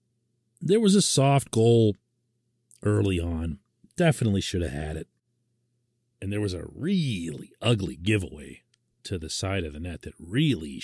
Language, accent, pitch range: English, American, 95-120 Hz